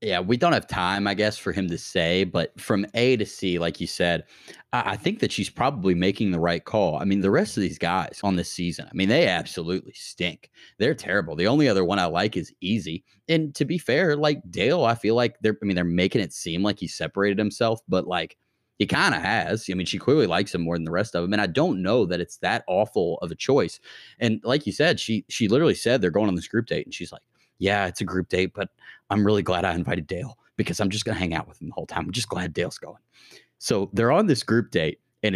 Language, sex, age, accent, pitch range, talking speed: English, male, 30-49, American, 85-105 Hz, 265 wpm